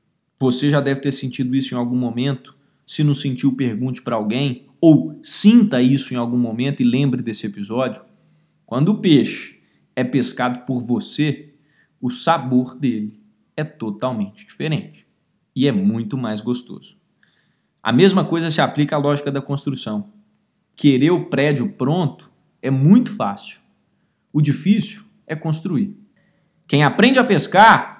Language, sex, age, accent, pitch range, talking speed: Portuguese, male, 20-39, Brazilian, 130-205 Hz, 145 wpm